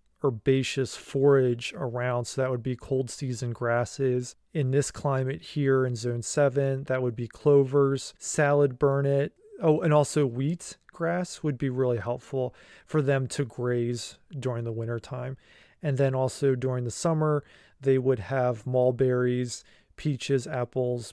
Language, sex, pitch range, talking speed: English, male, 125-145 Hz, 150 wpm